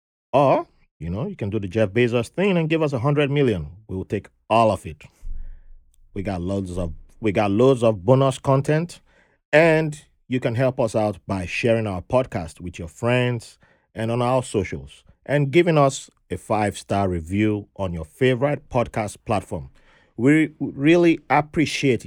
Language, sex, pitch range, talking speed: English, male, 95-135 Hz, 170 wpm